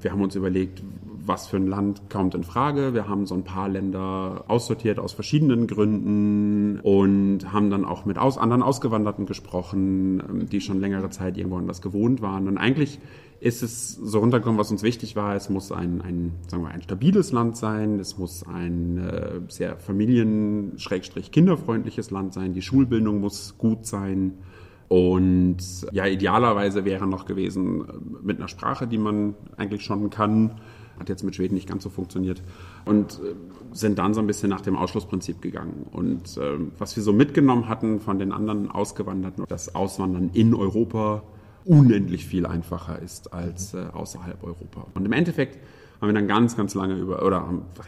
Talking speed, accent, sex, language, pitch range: 175 wpm, German, male, German, 90-105 Hz